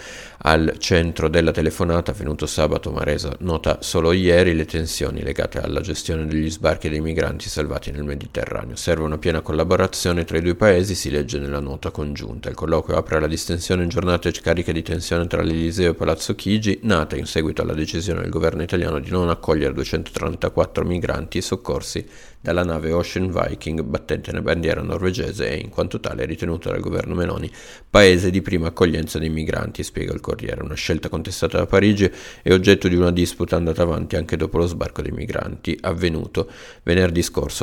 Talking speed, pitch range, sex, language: 175 wpm, 80-90 Hz, male, Italian